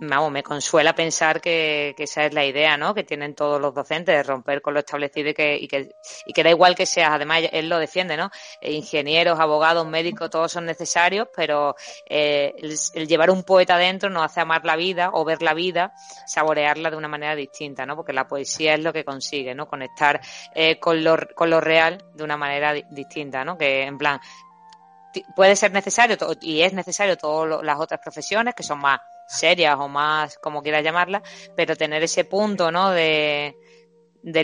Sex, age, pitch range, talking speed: female, 20-39, 150-175 Hz, 200 wpm